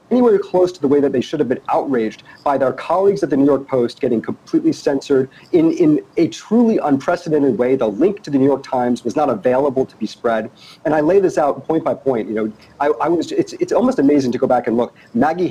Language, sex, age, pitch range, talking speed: English, male, 40-59, 130-165 Hz, 250 wpm